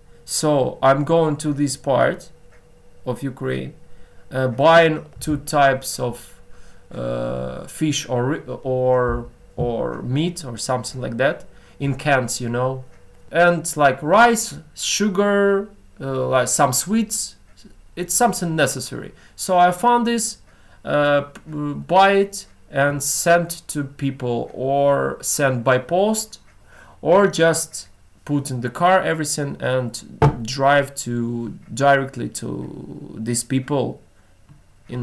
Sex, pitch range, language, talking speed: male, 120-150 Hz, English, 115 wpm